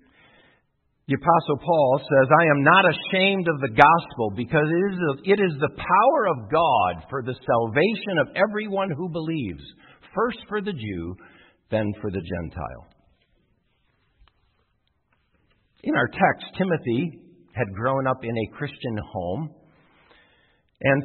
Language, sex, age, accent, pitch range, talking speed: English, male, 50-69, American, 125-180 Hz, 130 wpm